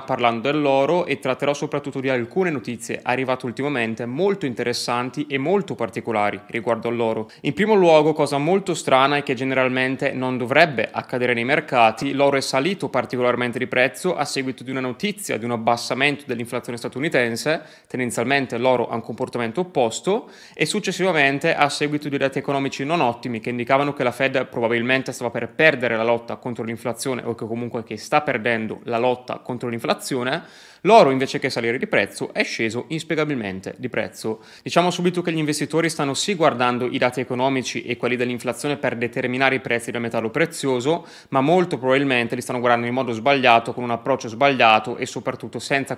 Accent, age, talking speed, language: native, 20-39, 170 wpm, Italian